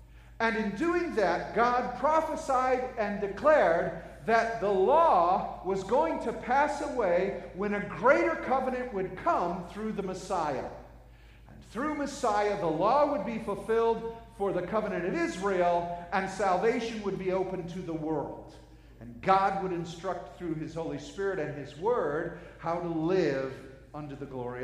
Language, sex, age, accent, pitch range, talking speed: English, male, 50-69, American, 165-230 Hz, 155 wpm